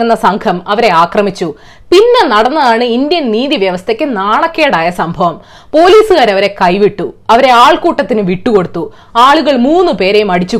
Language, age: Malayalam, 20-39